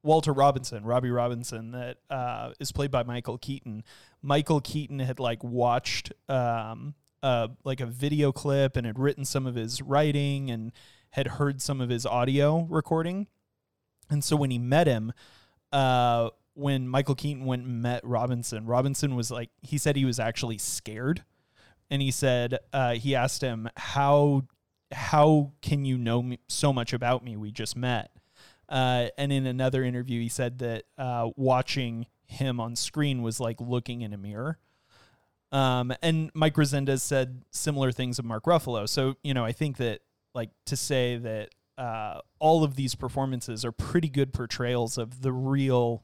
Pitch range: 120-140 Hz